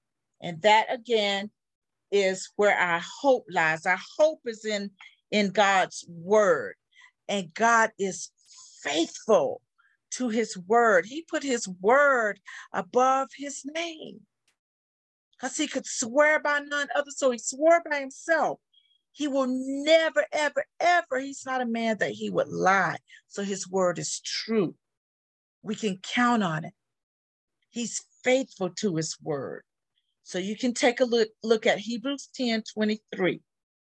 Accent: American